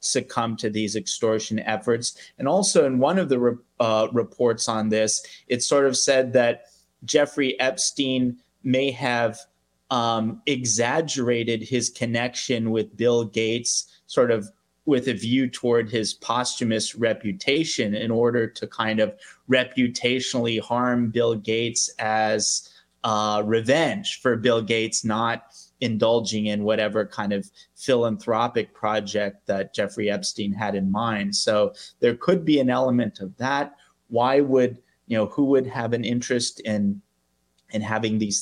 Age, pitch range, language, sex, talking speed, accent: 30-49, 105-125 Hz, English, male, 140 wpm, American